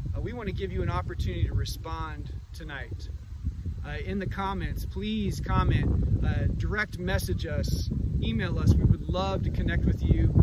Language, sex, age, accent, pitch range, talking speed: English, male, 40-59, American, 85-100 Hz, 165 wpm